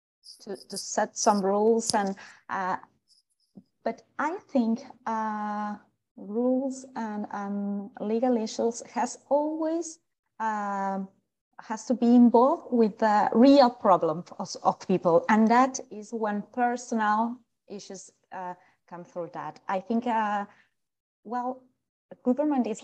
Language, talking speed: English, 120 wpm